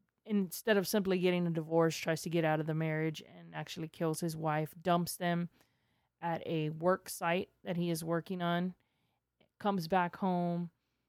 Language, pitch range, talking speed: English, 160-180 Hz, 175 wpm